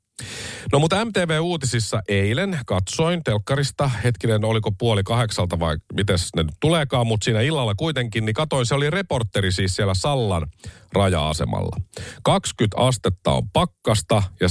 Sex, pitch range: male, 95-135 Hz